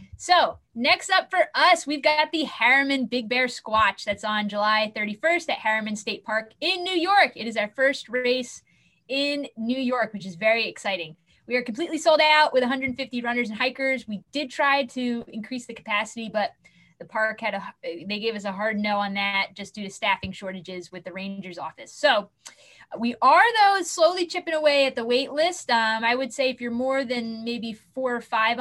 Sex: female